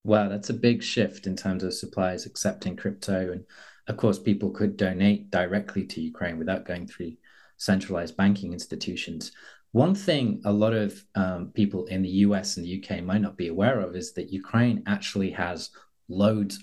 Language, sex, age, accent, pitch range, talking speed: English, male, 30-49, British, 90-105 Hz, 180 wpm